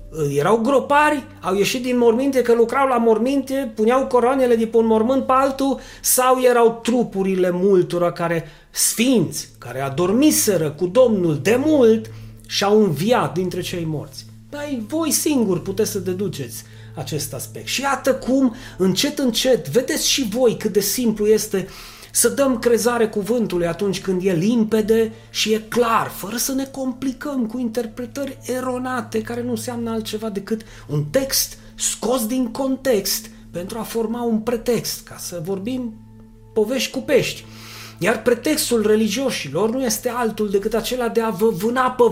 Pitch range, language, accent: 175-245 Hz, Romanian, native